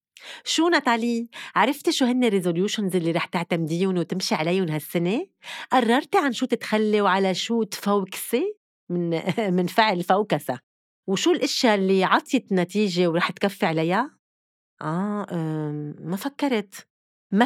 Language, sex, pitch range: Arabic, female, 175-235 Hz